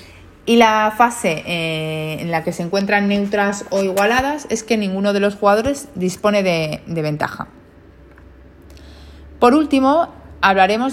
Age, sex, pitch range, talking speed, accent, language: 30-49, female, 170-220 Hz, 135 wpm, Spanish, Spanish